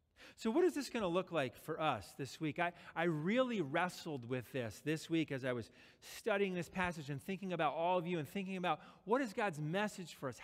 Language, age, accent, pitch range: English, 40-59, American, 125-190 Hz